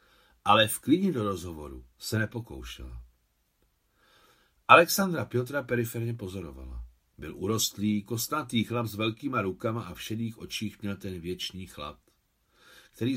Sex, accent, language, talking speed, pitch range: male, native, Czech, 125 wpm, 95-130 Hz